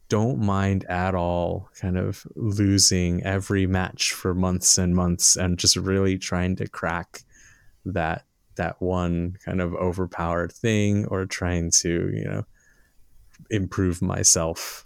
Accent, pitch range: American, 90-110 Hz